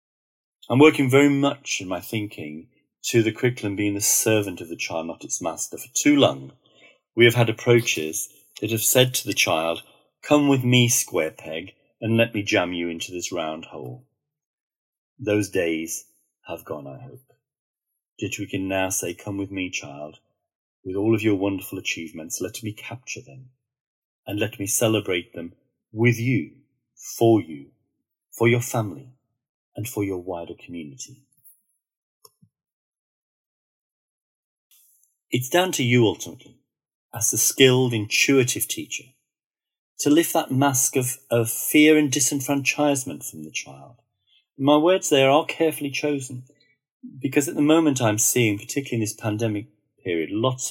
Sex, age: male, 40-59